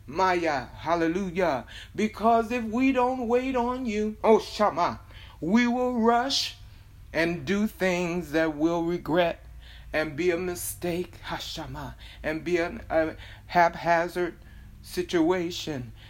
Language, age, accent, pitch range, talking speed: English, 60-79, American, 165-230 Hz, 120 wpm